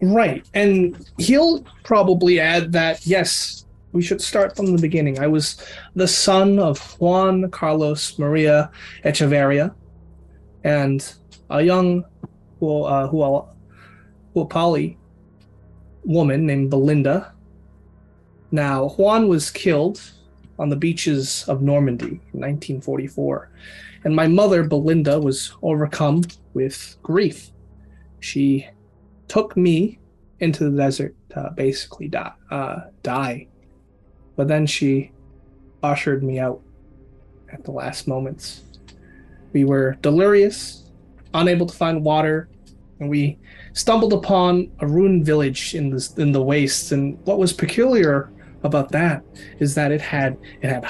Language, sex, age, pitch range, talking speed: English, male, 20-39, 130-170 Hz, 115 wpm